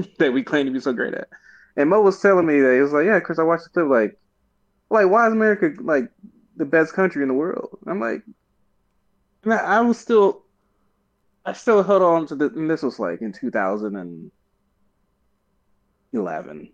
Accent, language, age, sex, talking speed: American, English, 20-39, male, 190 wpm